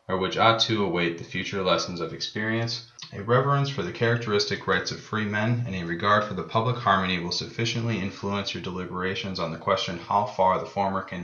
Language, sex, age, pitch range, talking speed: English, male, 30-49, 90-110 Hz, 210 wpm